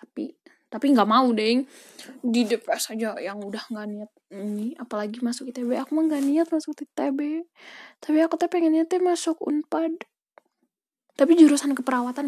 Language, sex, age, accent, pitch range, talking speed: Indonesian, female, 10-29, native, 225-280 Hz, 155 wpm